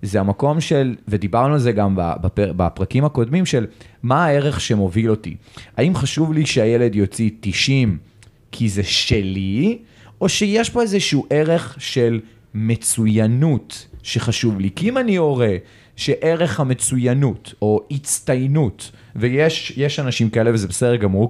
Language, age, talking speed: Hebrew, 30-49, 130 wpm